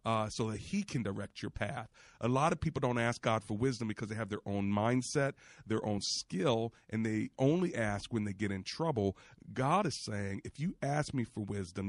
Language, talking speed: English, 220 wpm